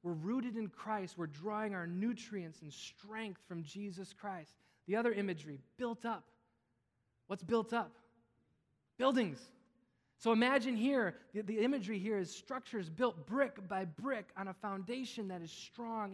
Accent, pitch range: American, 180-230 Hz